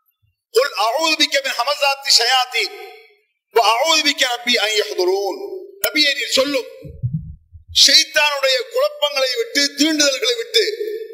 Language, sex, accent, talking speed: English, male, Indian, 100 wpm